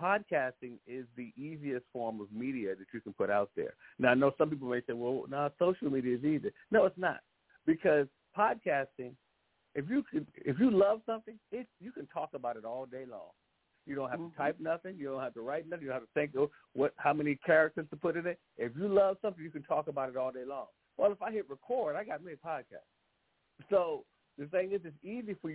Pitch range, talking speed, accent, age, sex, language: 130-180 Hz, 235 wpm, American, 50-69, male, English